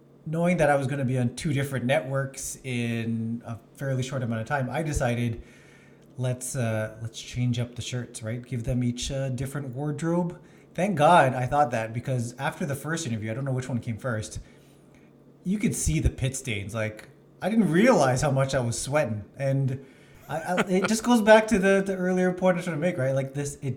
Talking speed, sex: 215 wpm, male